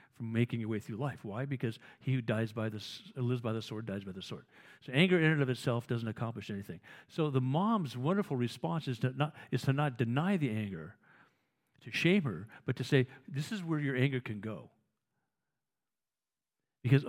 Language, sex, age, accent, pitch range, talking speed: English, male, 50-69, American, 115-150 Hz, 205 wpm